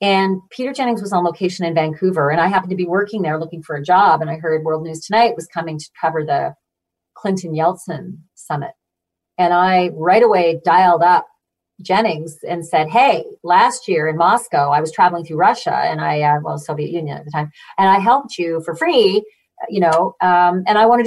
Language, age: English, 40-59